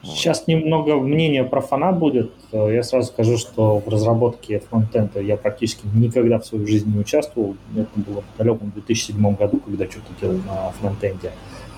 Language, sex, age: Russian, male, 20-39